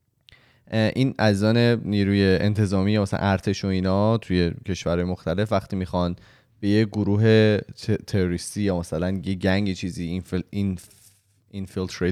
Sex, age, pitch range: male, 20-39, 95-120 Hz